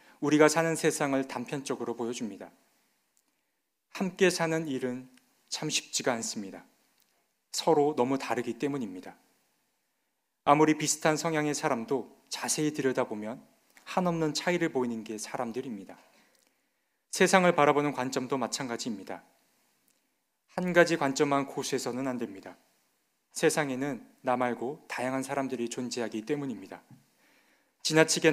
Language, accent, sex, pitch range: Korean, native, male, 125-155 Hz